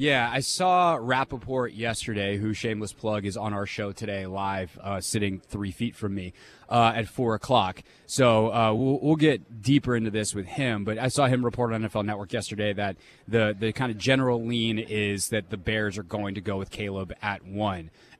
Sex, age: male, 20-39